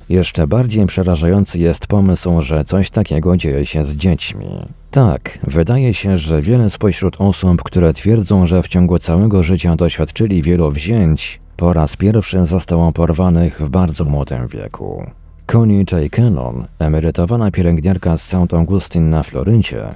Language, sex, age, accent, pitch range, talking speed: Polish, male, 40-59, native, 80-95 Hz, 145 wpm